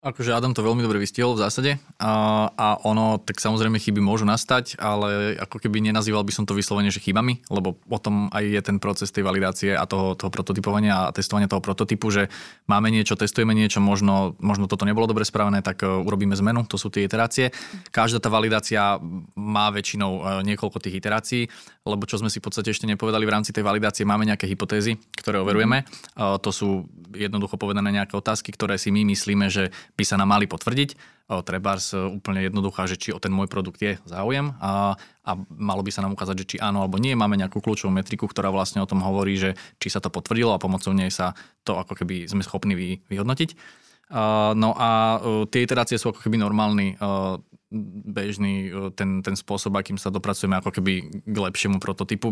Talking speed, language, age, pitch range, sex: 195 wpm, Slovak, 20-39, 95-110 Hz, male